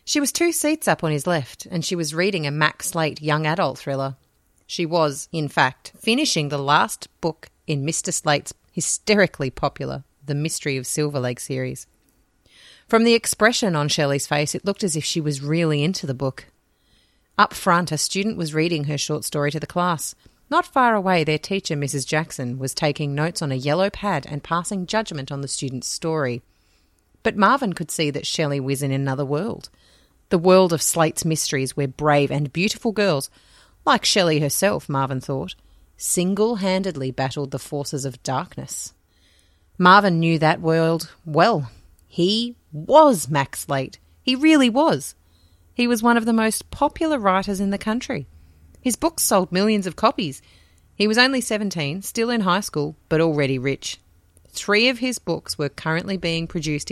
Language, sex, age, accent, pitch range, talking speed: English, female, 30-49, Australian, 135-195 Hz, 175 wpm